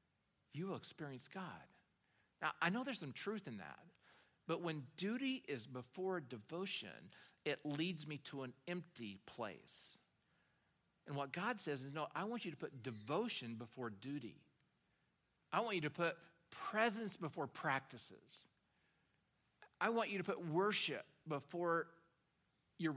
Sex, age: male, 50-69